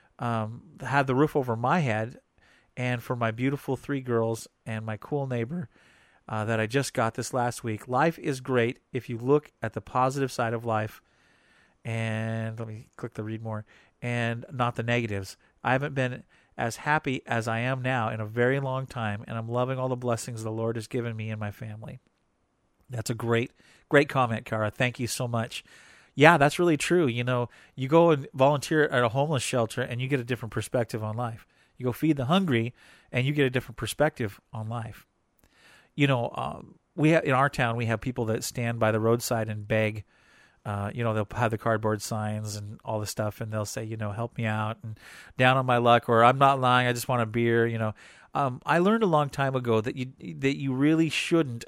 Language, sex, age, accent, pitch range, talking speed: English, male, 40-59, American, 115-135 Hz, 220 wpm